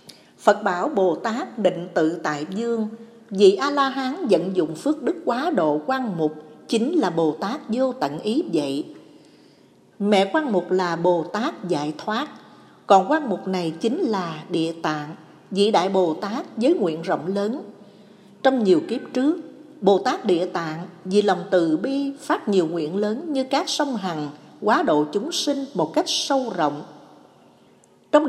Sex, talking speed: female, 170 wpm